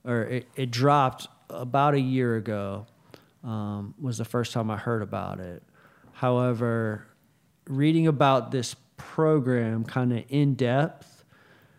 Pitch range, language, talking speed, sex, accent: 110-135 Hz, English, 125 wpm, male, American